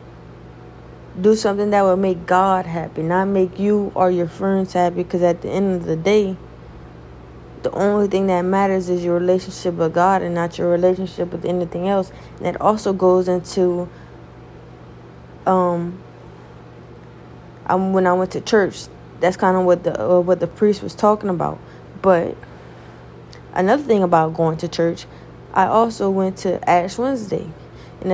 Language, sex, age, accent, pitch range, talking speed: English, female, 20-39, American, 160-205 Hz, 160 wpm